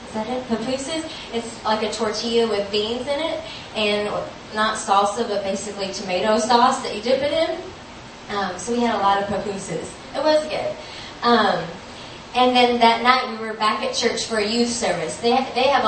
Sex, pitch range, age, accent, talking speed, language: female, 200-230 Hz, 30-49, American, 195 wpm, English